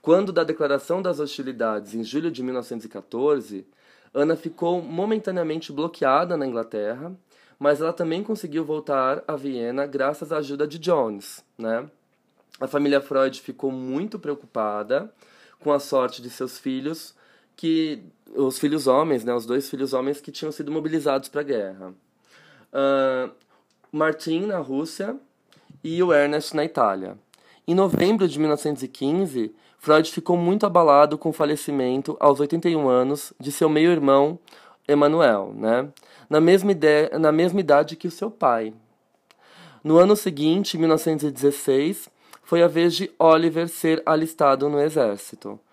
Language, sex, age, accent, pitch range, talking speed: Portuguese, male, 20-39, Brazilian, 135-165 Hz, 140 wpm